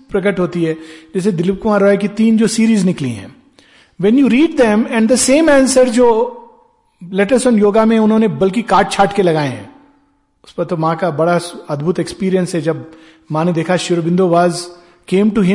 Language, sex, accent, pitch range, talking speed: Hindi, male, native, 175-255 Hz, 135 wpm